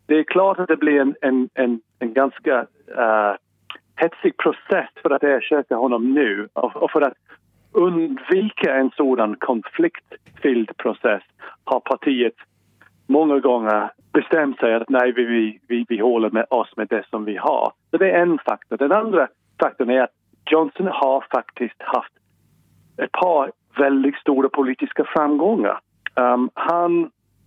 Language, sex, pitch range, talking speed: English, male, 125-160 Hz, 130 wpm